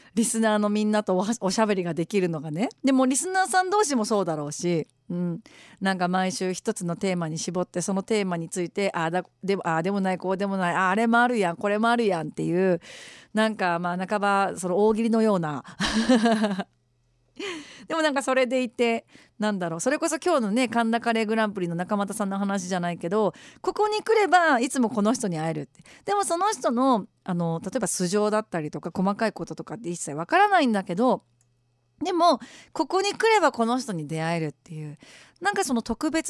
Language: Japanese